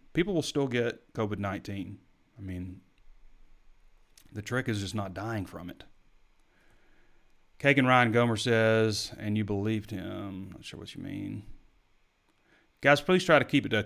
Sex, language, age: male, English, 30-49